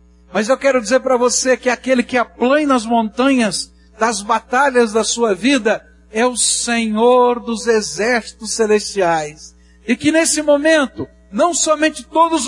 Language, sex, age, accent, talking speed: Portuguese, male, 60-79, Brazilian, 150 wpm